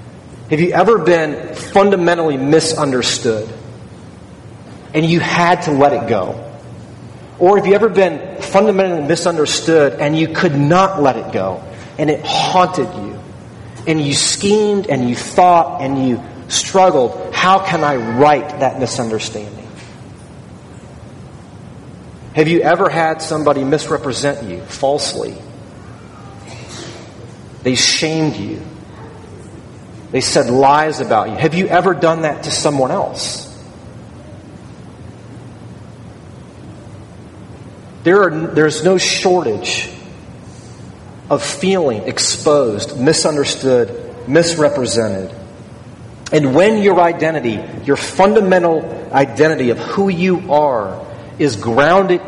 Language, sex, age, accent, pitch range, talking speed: English, male, 30-49, American, 125-170 Hz, 105 wpm